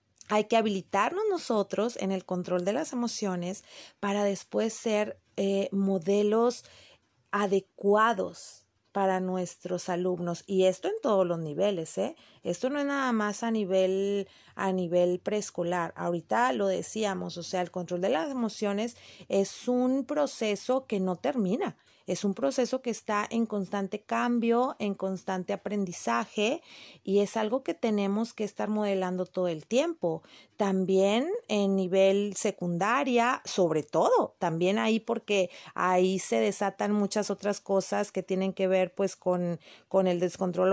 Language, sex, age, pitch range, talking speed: Spanish, female, 40-59, 185-215 Hz, 145 wpm